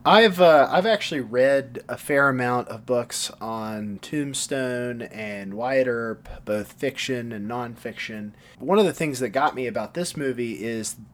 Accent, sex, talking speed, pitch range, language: American, male, 165 wpm, 110-135 Hz, English